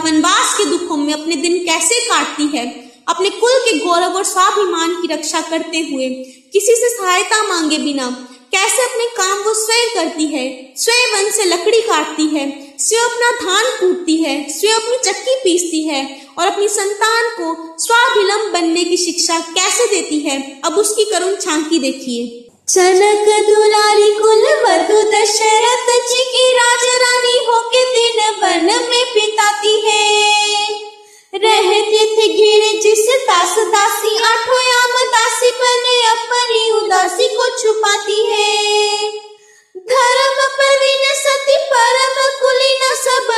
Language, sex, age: Hindi, female, 20-39